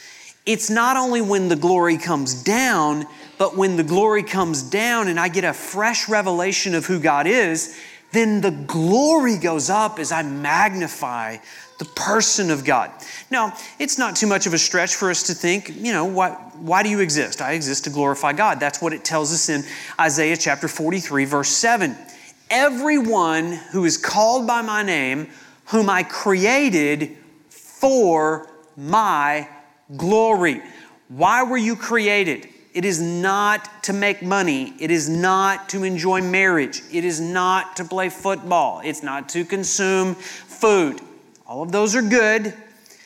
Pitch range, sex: 165-215 Hz, male